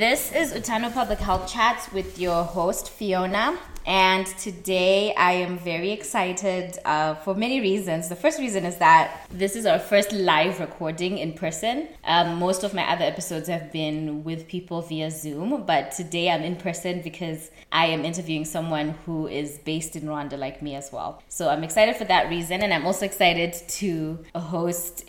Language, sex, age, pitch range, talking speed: English, female, 20-39, 160-205 Hz, 180 wpm